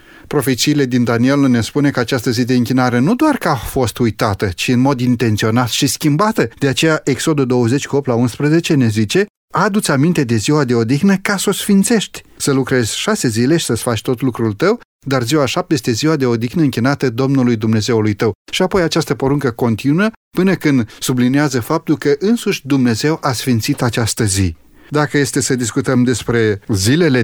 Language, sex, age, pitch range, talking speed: Romanian, male, 30-49, 120-150 Hz, 185 wpm